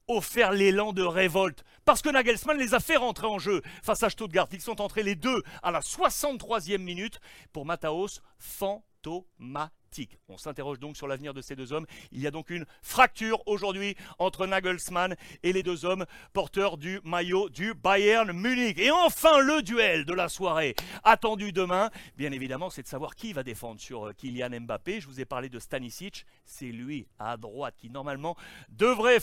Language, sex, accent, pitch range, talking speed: French, male, French, 150-205 Hz, 185 wpm